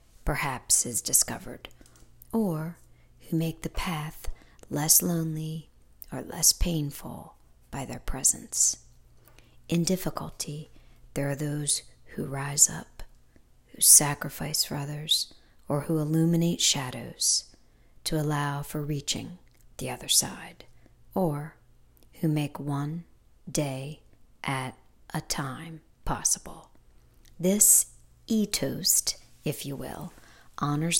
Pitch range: 135-160 Hz